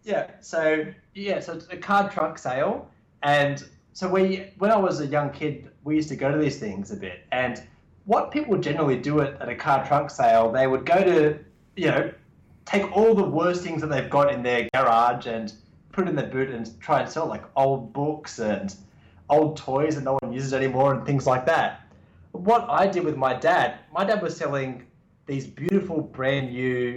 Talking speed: 205 wpm